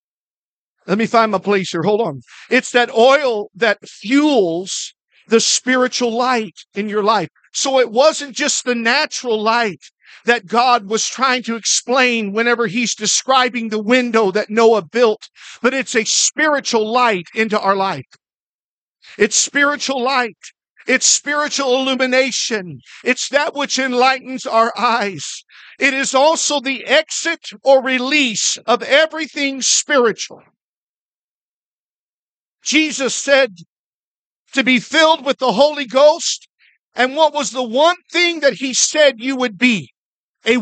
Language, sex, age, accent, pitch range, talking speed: English, male, 50-69, American, 230-295 Hz, 135 wpm